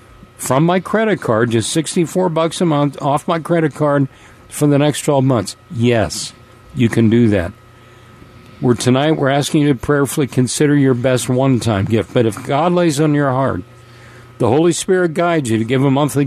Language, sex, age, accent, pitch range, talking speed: English, male, 50-69, American, 115-155 Hz, 190 wpm